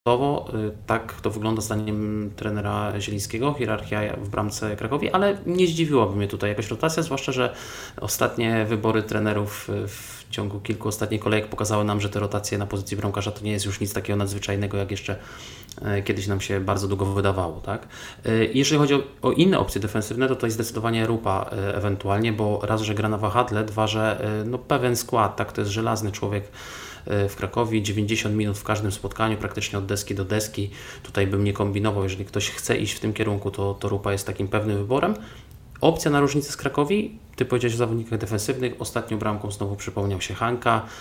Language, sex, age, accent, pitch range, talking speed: Polish, male, 20-39, native, 100-115 Hz, 180 wpm